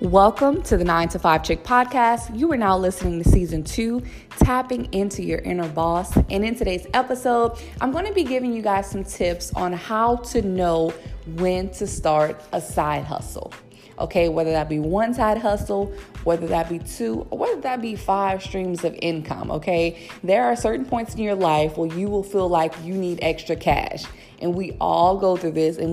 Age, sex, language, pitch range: 20-39, female, English, 165-210 Hz